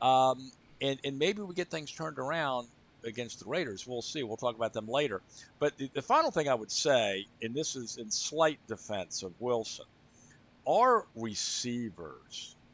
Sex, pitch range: male, 100-135 Hz